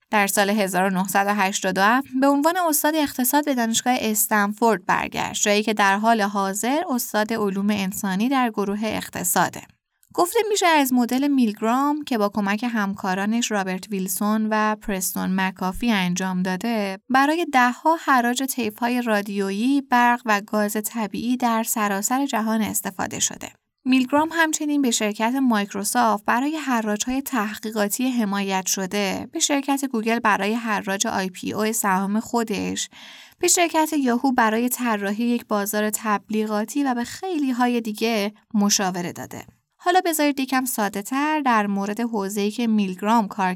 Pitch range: 205-260 Hz